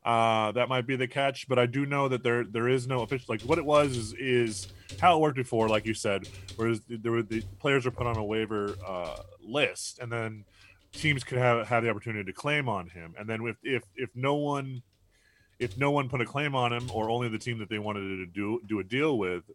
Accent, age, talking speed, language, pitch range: American, 20-39, 250 wpm, English, 100-125 Hz